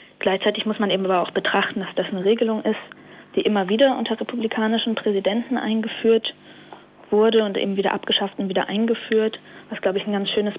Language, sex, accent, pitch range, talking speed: German, female, German, 190-210 Hz, 185 wpm